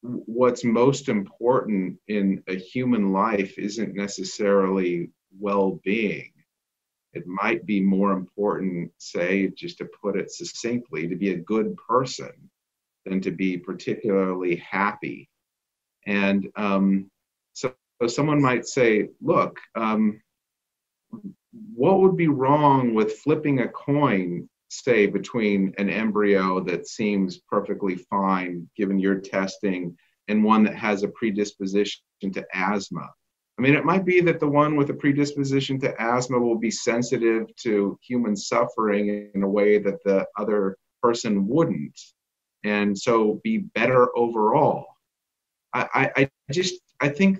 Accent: American